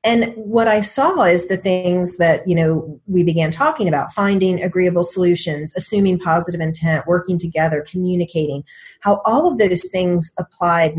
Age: 30-49